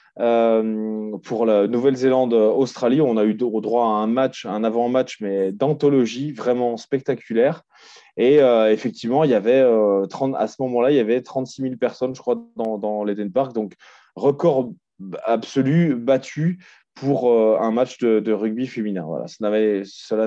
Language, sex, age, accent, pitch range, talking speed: French, male, 20-39, French, 110-130 Hz, 165 wpm